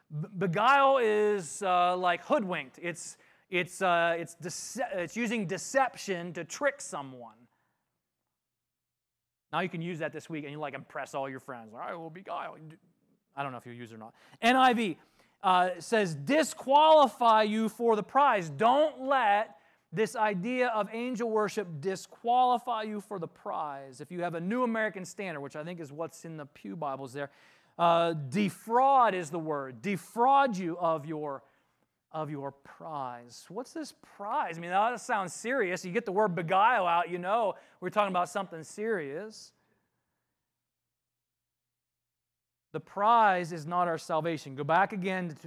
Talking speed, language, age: 160 wpm, English, 30-49